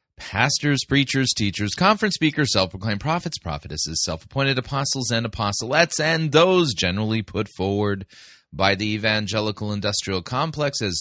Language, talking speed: English, 125 wpm